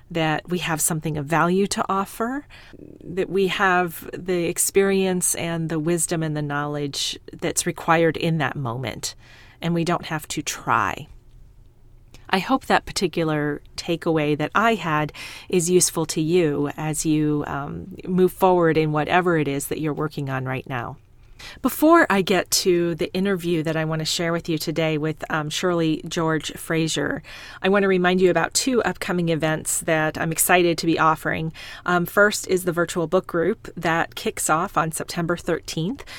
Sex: female